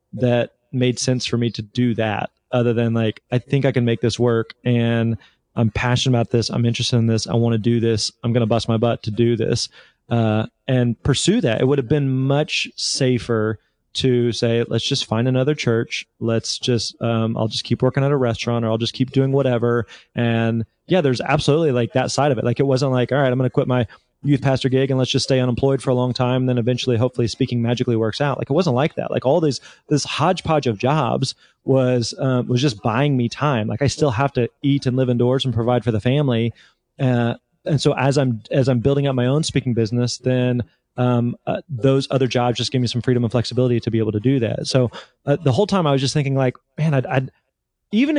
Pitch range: 115-135 Hz